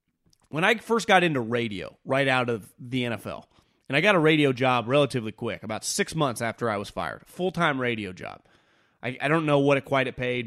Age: 30-49